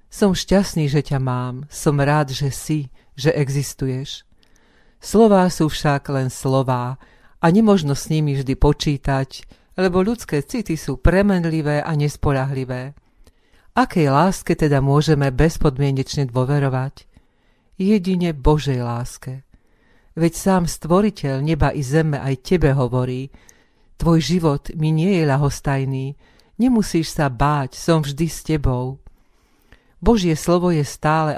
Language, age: Slovak, 40-59